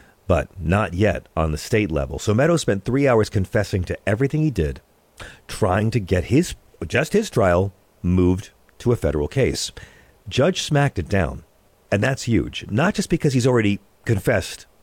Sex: male